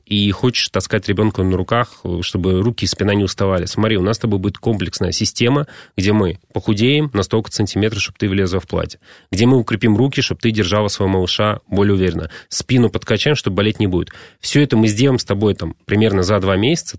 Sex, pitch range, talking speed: male, 95-120 Hz, 205 wpm